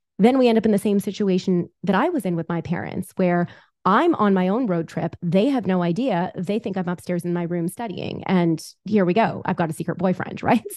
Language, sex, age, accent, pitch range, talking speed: English, female, 30-49, American, 175-205 Hz, 245 wpm